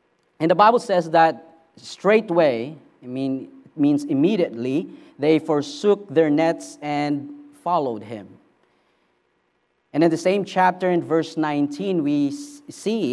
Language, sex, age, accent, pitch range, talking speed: English, male, 40-59, Filipino, 140-180 Hz, 125 wpm